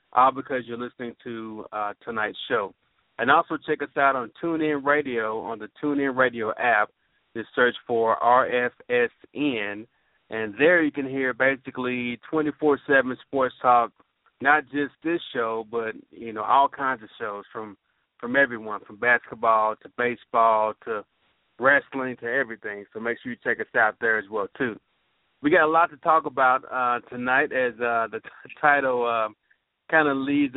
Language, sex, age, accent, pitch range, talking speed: English, male, 30-49, American, 115-140 Hz, 170 wpm